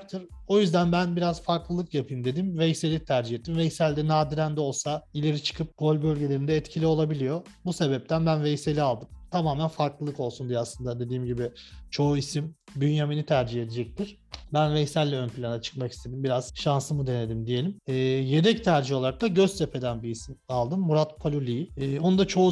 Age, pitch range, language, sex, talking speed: 40-59, 130-155 Hz, Turkish, male, 170 wpm